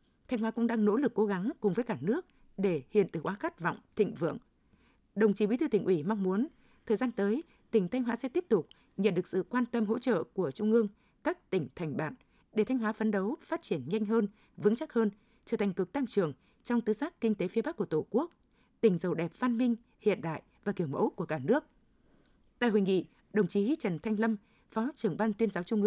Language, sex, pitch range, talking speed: Vietnamese, female, 195-235 Hz, 245 wpm